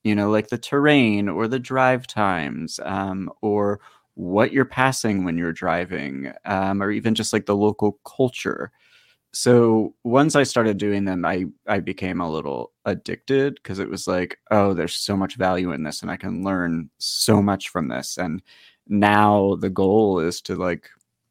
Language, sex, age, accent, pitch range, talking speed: English, male, 30-49, American, 100-130 Hz, 175 wpm